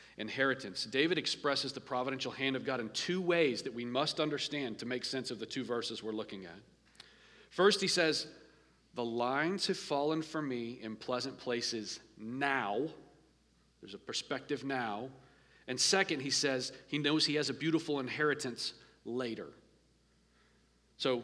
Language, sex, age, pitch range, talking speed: English, male, 40-59, 130-160 Hz, 155 wpm